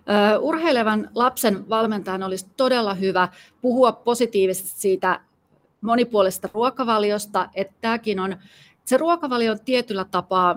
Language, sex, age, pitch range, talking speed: Finnish, female, 30-49, 180-215 Hz, 100 wpm